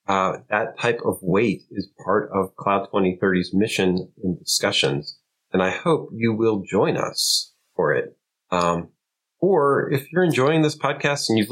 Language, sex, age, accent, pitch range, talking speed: English, male, 40-59, American, 110-150 Hz, 160 wpm